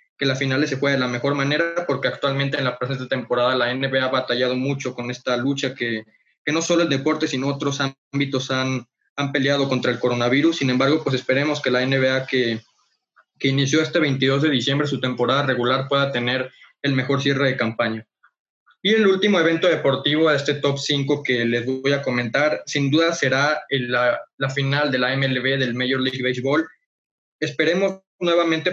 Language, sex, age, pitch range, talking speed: Spanish, male, 20-39, 130-150 Hz, 190 wpm